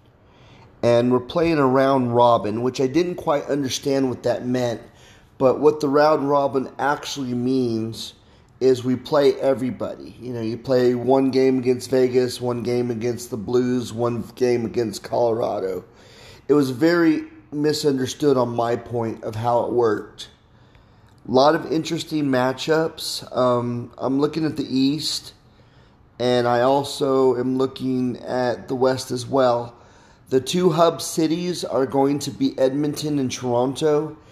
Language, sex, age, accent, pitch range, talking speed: English, male, 30-49, American, 120-140 Hz, 145 wpm